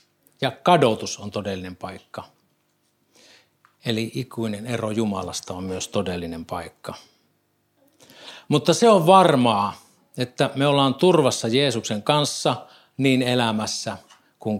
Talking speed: 105 wpm